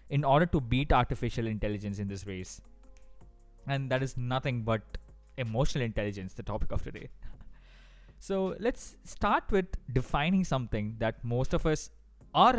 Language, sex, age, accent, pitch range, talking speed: English, male, 20-39, Indian, 115-170 Hz, 150 wpm